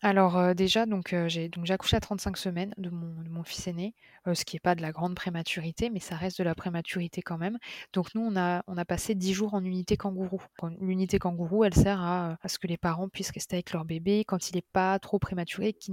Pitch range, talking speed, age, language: 175-195 Hz, 260 wpm, 20-39, French